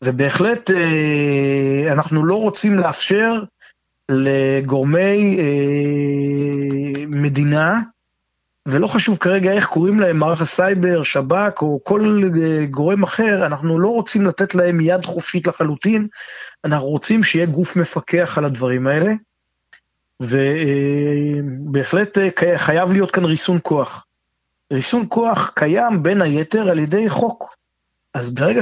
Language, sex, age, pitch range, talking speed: Hebrew, male, 30-49, 140-190 Hz, 110 wpm